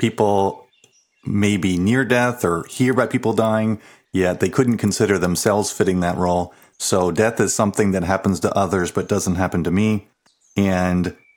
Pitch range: 90-105 Hz